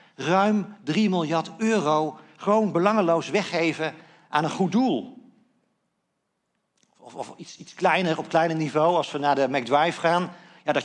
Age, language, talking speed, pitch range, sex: 50-69, Dutch, 150 wpm, 150-195 Hz, male